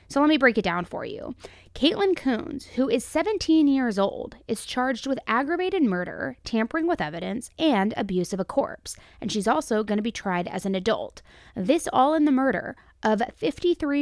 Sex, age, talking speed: female, 20-39, 190 wpm